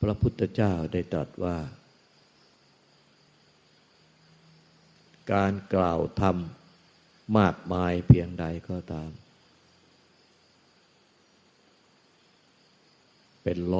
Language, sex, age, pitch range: Thai, male, 60-79, 80-95 Hz